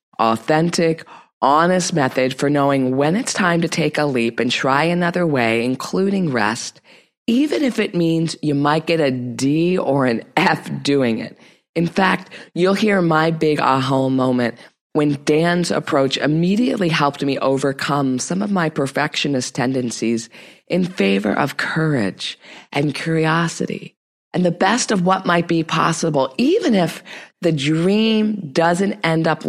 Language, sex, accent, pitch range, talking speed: English, female, American, 135-175 Hz, 150 wpm